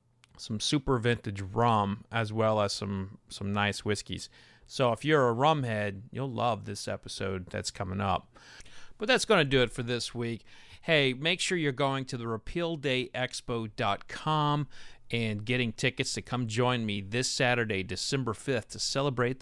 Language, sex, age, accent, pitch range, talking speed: English, male, 30-49, American, 110-150 Hz, 160 wpm